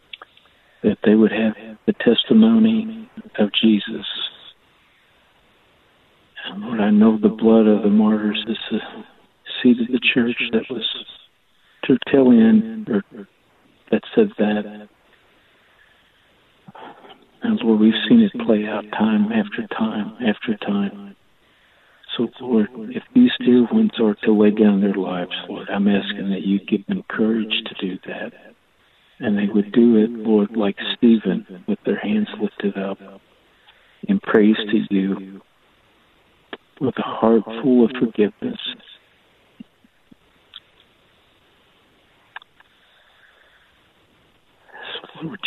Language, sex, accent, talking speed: English, male, American, 120 wpm